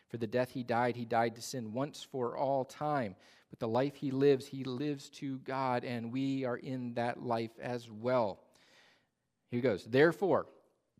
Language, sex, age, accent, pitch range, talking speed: English, male, 40-59, American, 120-145 Hz, 185 wpm